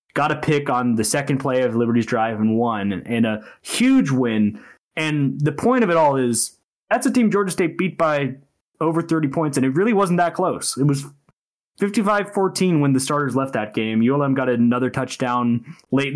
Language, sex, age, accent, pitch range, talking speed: English, male, 20-39, American, 120-155 Hz, 200 wpm